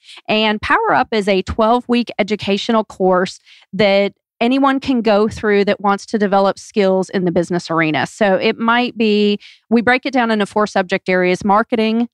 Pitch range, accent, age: 180-215 Hz, American, 40-59